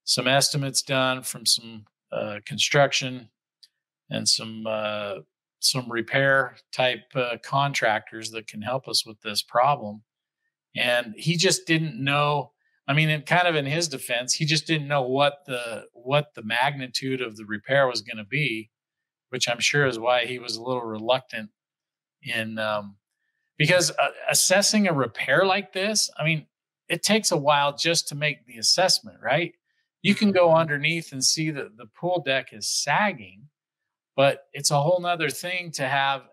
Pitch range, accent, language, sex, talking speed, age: 125-155 Hz, American, English, male, 170 wpm, 40-59